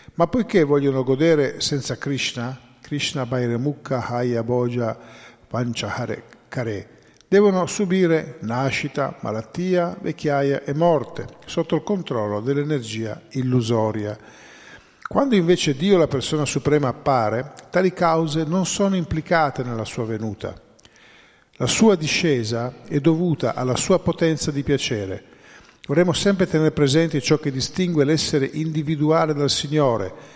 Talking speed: 115 wpm